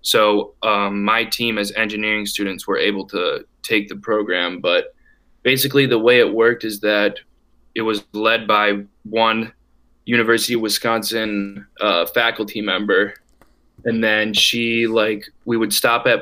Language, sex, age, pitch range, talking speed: English, male, 20-39, 105-120 Hz, 150 wpm